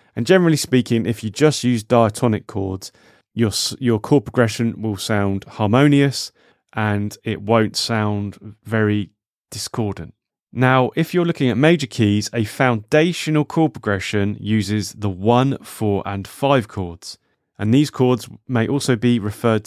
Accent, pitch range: British, 105-130 Hz